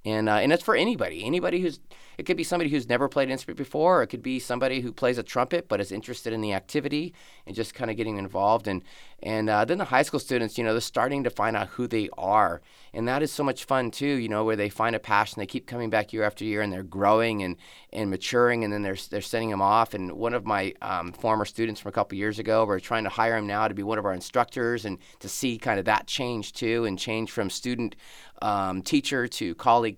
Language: English